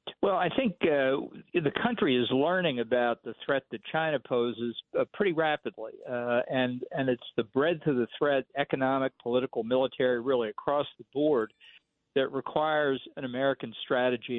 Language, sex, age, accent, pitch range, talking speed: English, male, 50-69, American, 115-140 Hz, 145 wpm